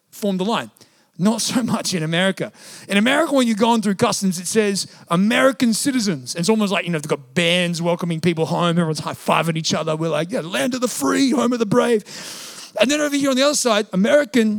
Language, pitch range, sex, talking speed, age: English, 170-250 Hz, male, 225 wpm, 30-49